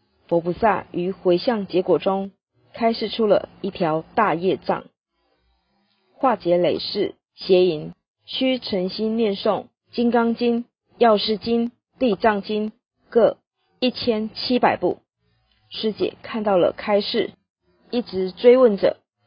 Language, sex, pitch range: Chinese, female, 185-230 Hz